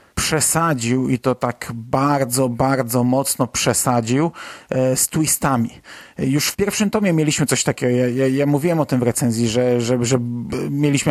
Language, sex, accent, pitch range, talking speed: Polish, male, native, 130-160 Hz, 155 wpm